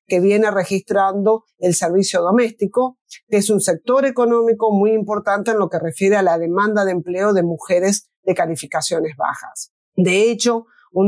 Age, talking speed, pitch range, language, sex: 40-59, 160 wpm, 180-220 Hz, Spanish, female